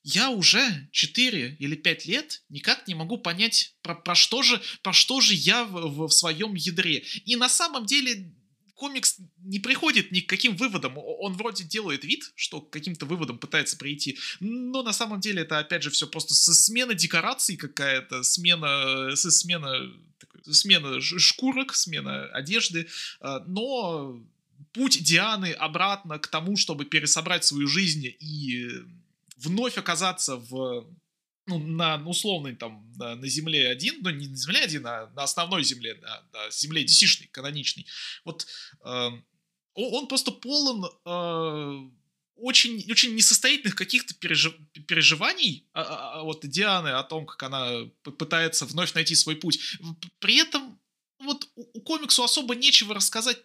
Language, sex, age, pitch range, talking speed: Russian, male, 20-39, 150-225 Hz, 145 wpm